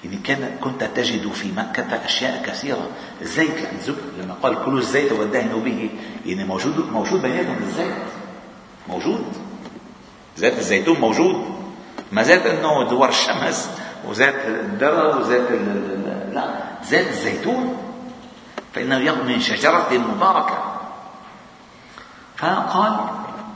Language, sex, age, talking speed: Arabic, male, 50-69, 105 wpm